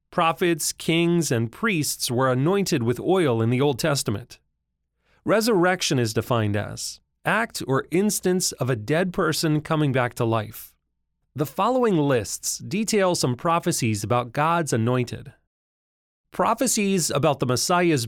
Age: 30-49